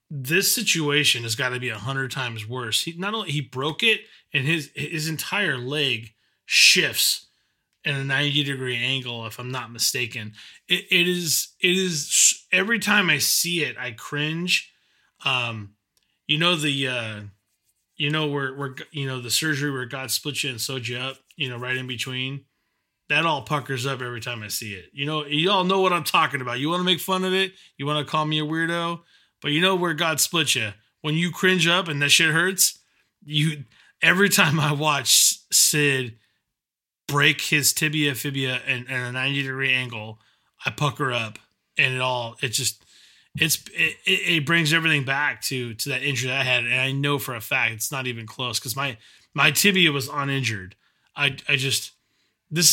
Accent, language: American, English